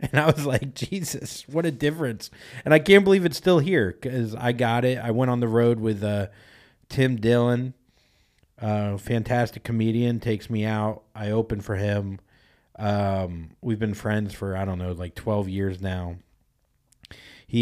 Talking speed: 175 wpm